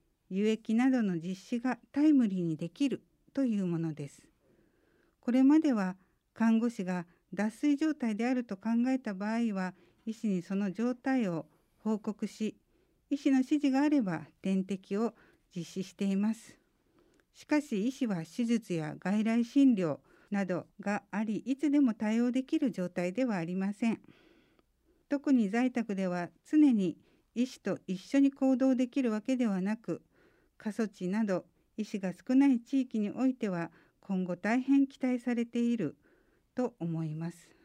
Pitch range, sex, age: 190-255 Hz, female, 60-79